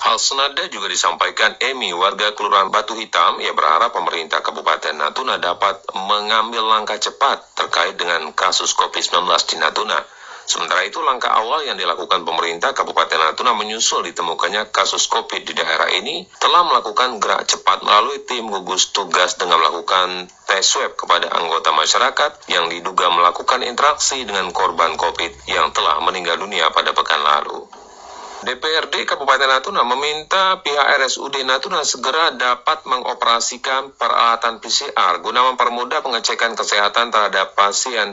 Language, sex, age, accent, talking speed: Indonesian, male, 30-49, native, 135 wpm